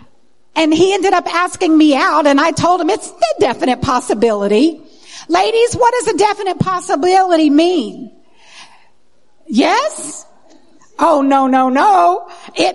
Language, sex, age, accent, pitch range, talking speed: English, female, 50-69, American, 245-350 Hz, 130 wpm